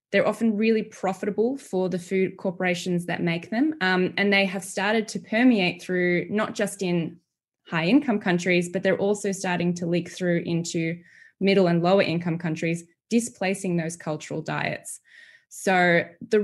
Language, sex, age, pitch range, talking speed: English, female, 20-39, 175-210 Hz, 155 wpm